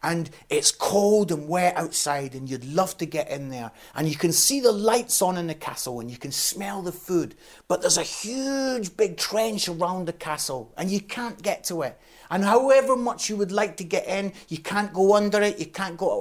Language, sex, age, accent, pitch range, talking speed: English, male, 30-49, British, 165-230 Hz, 225 wpm